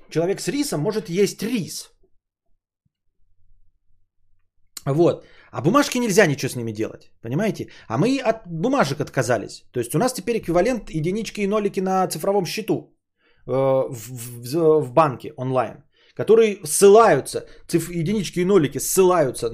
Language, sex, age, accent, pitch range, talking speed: Russian, male, 30-49, native, 135-210 Hz, 135 wpm